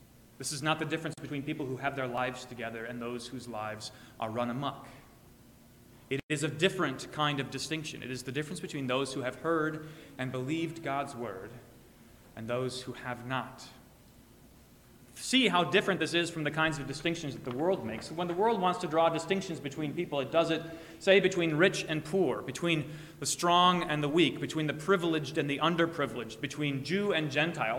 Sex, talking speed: male, 195 wpm